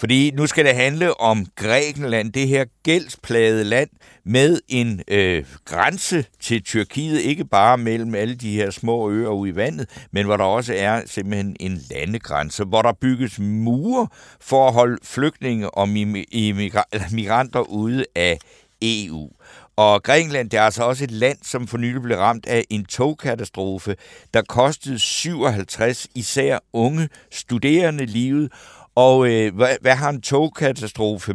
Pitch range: 100-130 Hz